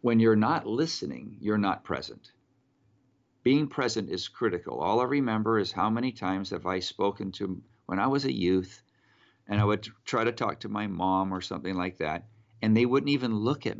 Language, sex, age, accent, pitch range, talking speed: English, male, 50-69, American, 100-115 Hz, 200 wpm